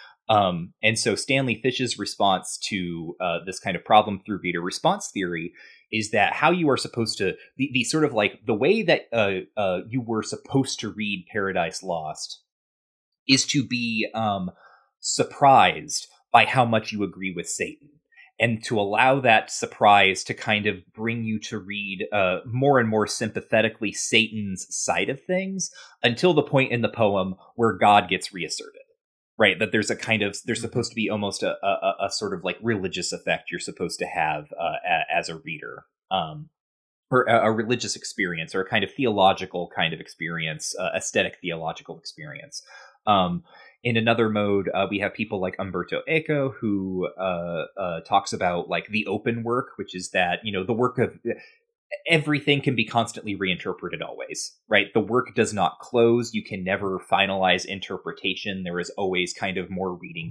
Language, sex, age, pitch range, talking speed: English, male, 30-49, 95-125 Hz, 175 wpm